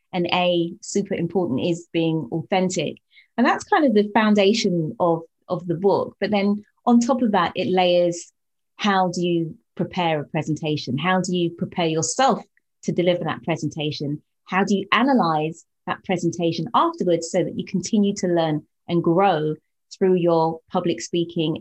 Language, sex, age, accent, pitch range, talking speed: English, female, 30-49, British, 170-220 Hz, 165 wpm